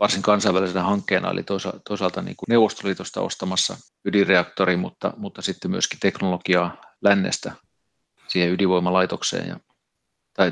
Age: 30-49